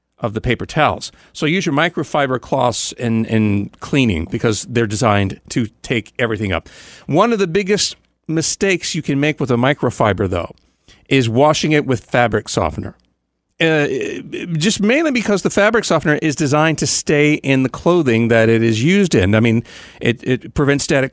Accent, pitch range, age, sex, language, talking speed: American, 115-165 Hz, 40-59, male, English, 175 wpm